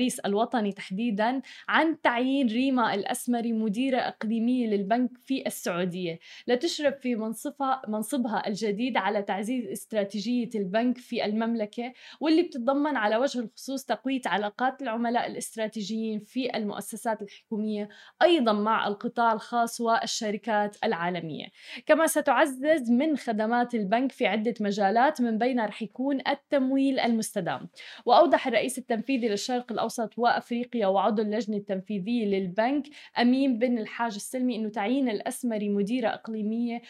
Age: 20-39